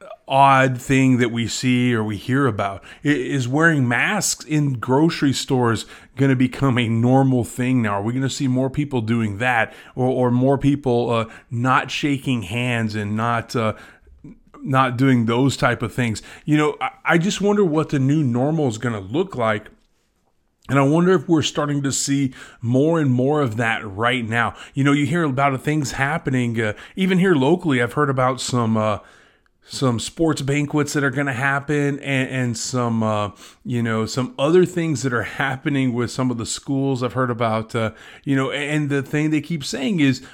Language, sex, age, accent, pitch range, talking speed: English, male, 30-49, American, 120-145 Hz, 195 wpm